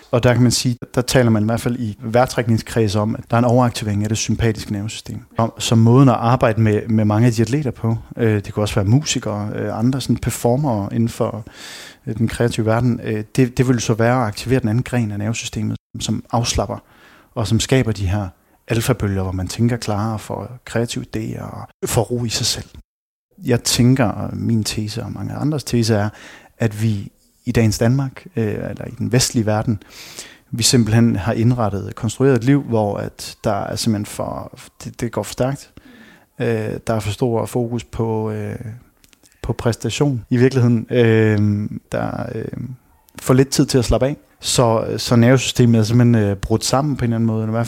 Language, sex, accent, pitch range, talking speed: English, male, Danish, 110-125 Hz, 200 wpm